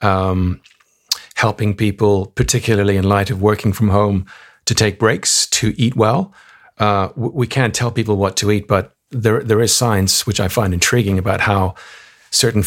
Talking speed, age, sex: 175 wpm, 50-69, male